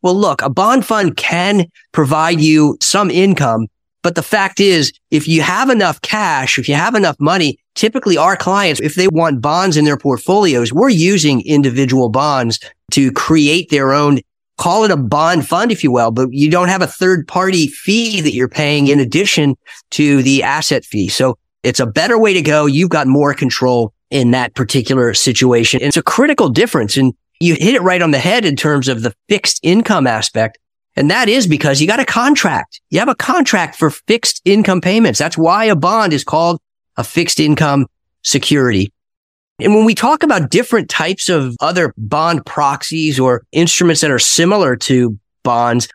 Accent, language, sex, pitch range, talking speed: American, English, male, 135-185 Hz, 190 wpm